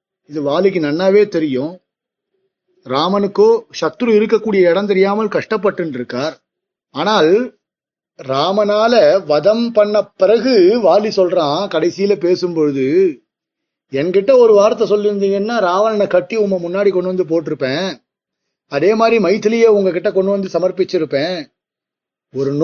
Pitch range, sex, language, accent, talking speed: 165-225 Hz, male, Tamil, native, 105 wpm